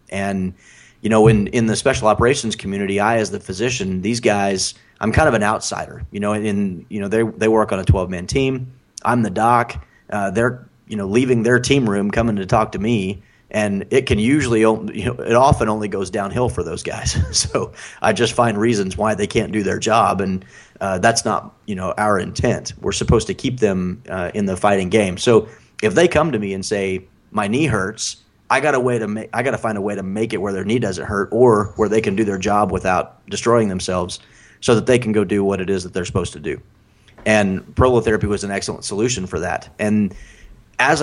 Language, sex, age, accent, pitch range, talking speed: English, male, 30-49, American, 95-115 Hz, 230 wpm